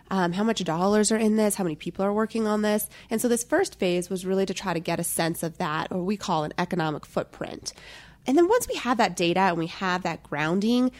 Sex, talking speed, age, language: female, 255 wpm, 20-39, English